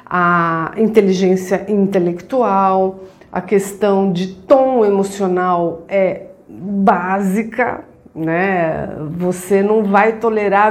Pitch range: 190-225 Hz